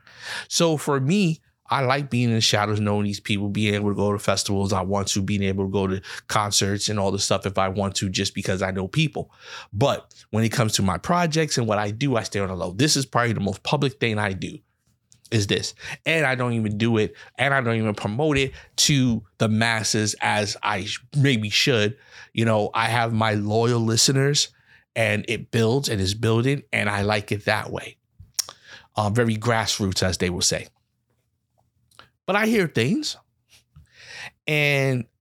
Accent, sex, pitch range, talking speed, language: American, male, 105-140 Hz, 200 wpm, English